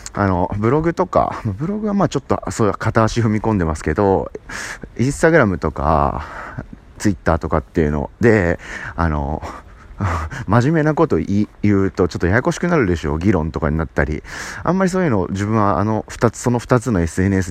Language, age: Japanese, 30-49